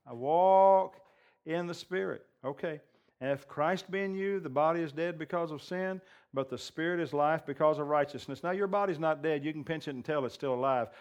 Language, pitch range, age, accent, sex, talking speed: English, 150-190 Hz, 50-69, American, male, 220 wpm